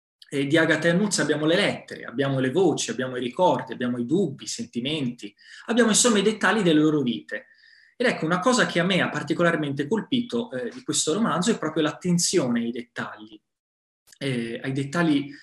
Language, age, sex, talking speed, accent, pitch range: Italian, 20-39, male, 180 wpm, native, 130-170 Hz